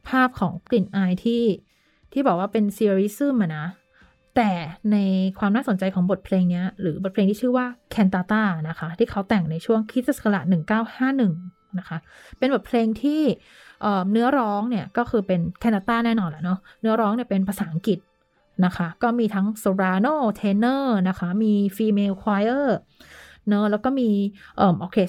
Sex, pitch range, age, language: female, 185-225 Hz, 20-39, Thai